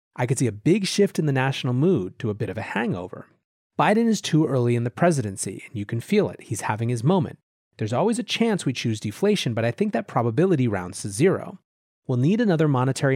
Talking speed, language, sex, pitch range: 235 wpm, English, male, 115-160 Hz